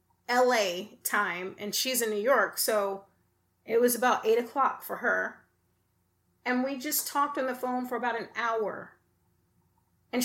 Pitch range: 190-260 Hz